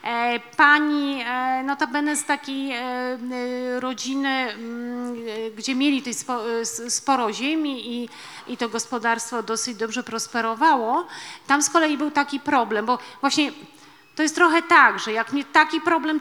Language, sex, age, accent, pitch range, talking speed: Polish, female, 30-49, native, 220-280 Hz, 115 wpm